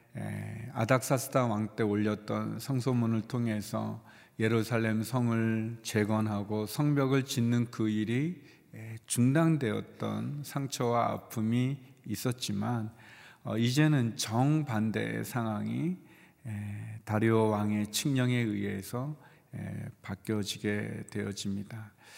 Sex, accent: male, native